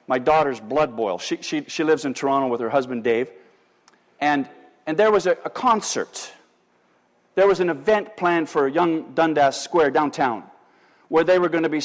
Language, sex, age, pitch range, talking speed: English, male, 50-69, 160-245 Hz, 190 wpm